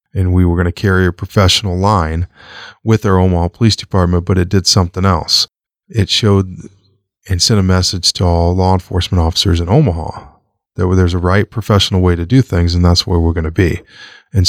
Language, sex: English, male